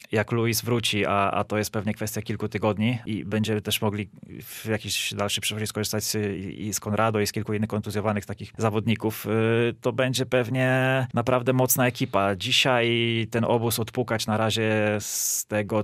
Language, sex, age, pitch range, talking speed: English, male, 20-39, 105-120 Hz, 175 wpm